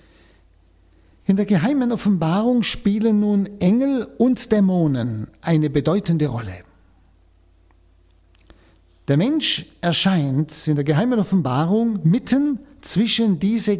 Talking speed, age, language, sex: 95 wpm, 50-69, German, male